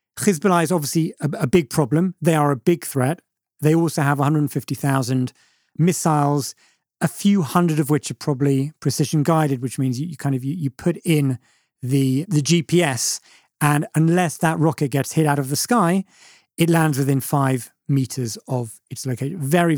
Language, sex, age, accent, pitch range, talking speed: English, male, 40-59, British, 135-170 Hz, 175 wpm